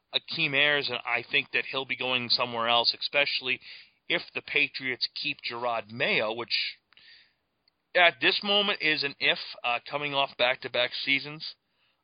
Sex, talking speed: male, 150 wpm